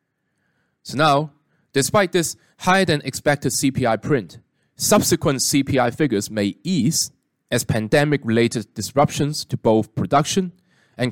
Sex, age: male, 20-39